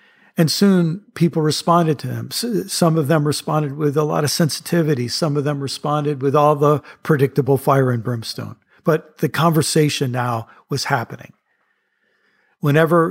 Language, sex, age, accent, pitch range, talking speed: English, male, 50-69, American, 130-150 Hz, 150 wpm